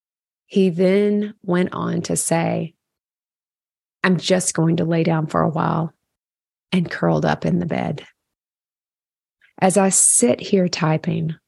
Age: 30-49